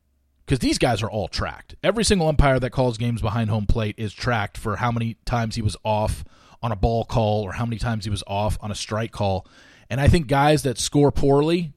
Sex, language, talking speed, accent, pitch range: male, English, 235 wpm, American, 110-150 Hz